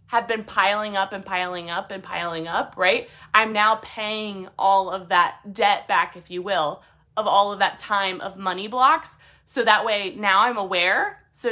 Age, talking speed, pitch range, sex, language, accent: 20-39, 195 wpm, 195-240 Hz, female, English, American